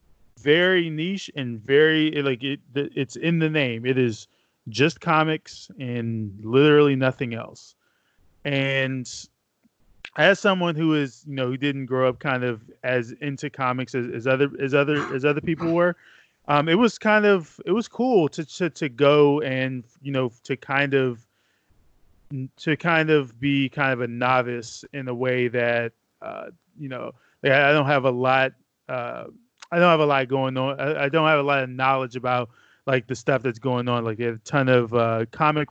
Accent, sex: American, male